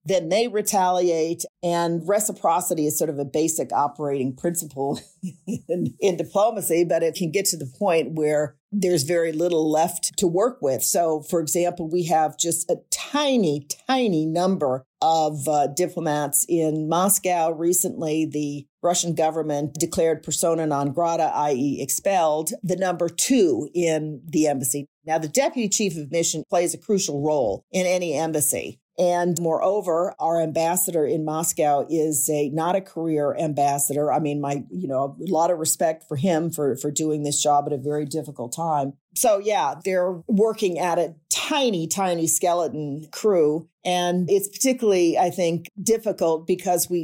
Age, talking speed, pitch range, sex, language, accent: 50-69, 160 wpm, 155-180 Hz, female, English, American